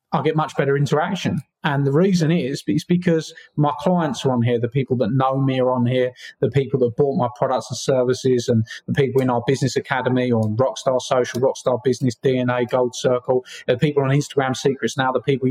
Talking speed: 215 wpm